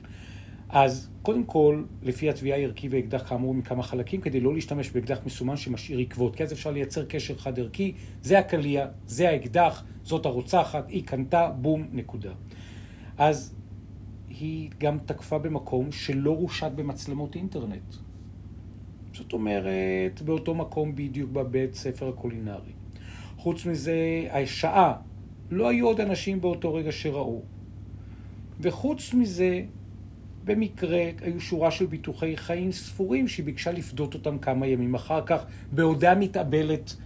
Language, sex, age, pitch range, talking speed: Hebrew, male, 40-59, 105-155 Hz, 130 wpm